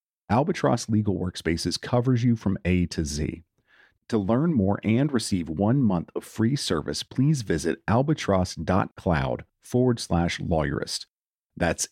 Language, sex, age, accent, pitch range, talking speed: English, male, 40-59, American, 90-115 Hz, 130 wpm